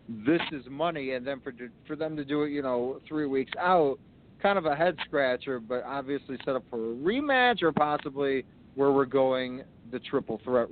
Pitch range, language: 115-140 Hz, English